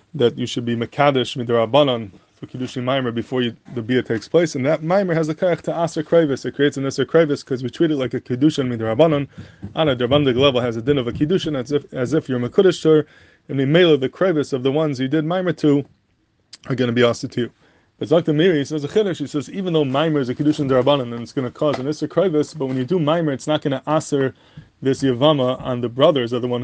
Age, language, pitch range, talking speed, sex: 20-39, English, 125-150 Hz, 250 wpm, male